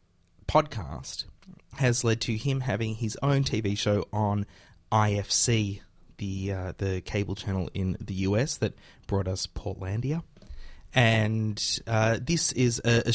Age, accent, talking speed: 20-39, Australian, 135 wpm